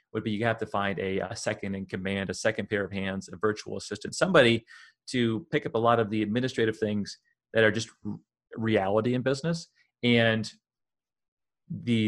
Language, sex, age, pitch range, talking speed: English, male, 30-49, 105-130 Hz, 190 wpm